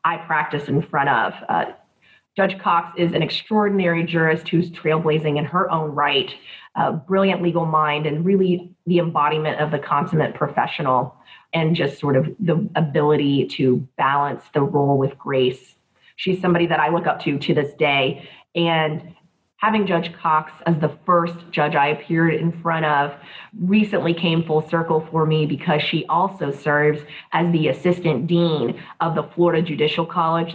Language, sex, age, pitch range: English, female, 30-49, 150-170 Hz